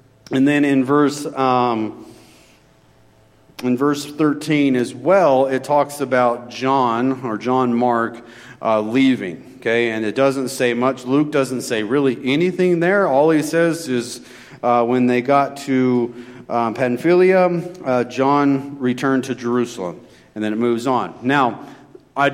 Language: English